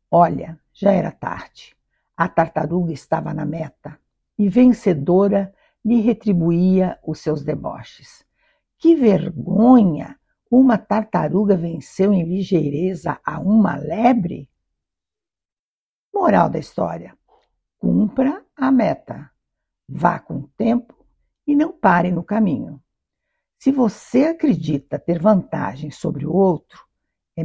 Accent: Brazilian